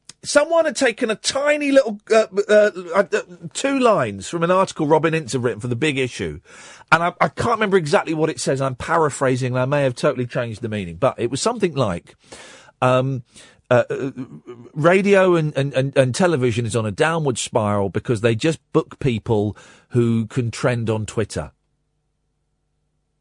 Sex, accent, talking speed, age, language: male, British, 180 wpm, 40-59, English